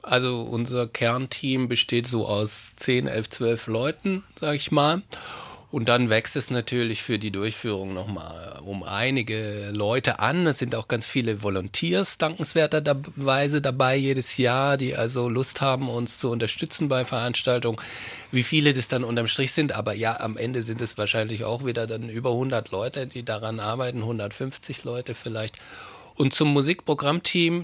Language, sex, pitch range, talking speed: German, male, 115-140 Hz, 160 wpm